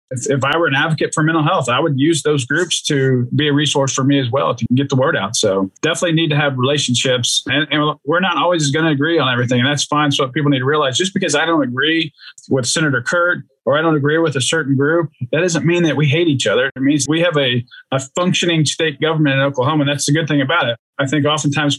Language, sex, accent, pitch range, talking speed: English, male, American, 135-155 Hz, 265 wpm